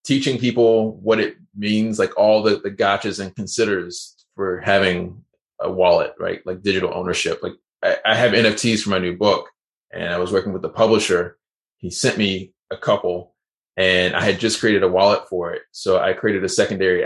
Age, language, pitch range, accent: 20-39, English, 100-125 Hz, American